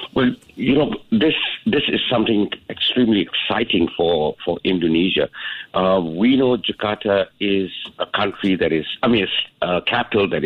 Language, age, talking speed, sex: English, 60-79, 155 wpm, male